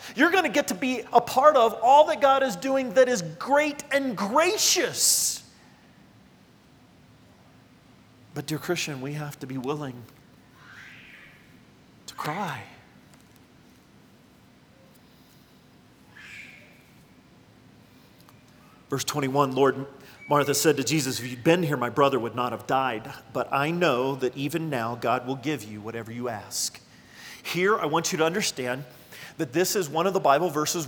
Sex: male